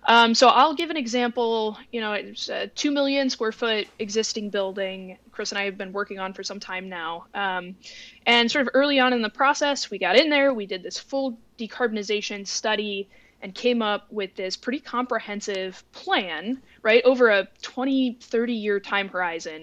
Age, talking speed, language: 20-39, 190 wpm, English